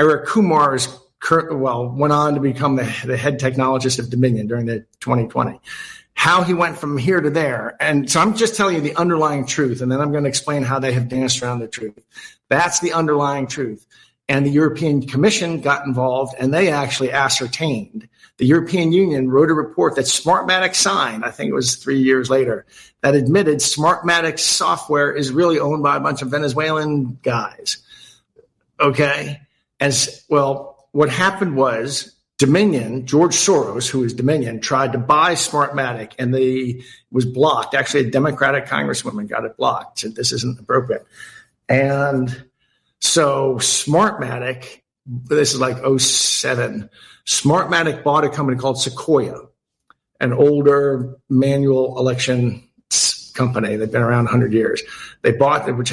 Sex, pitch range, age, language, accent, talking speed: male, 130-155 Hz, 50-69, English, American, 155 wpm